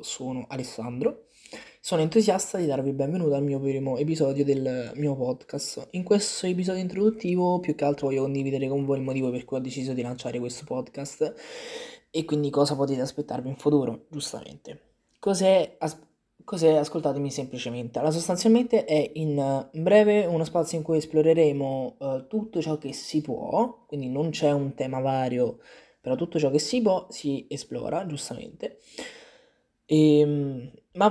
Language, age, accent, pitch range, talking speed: Italian, 20-39, native, 135-175 Hz, 155 wpm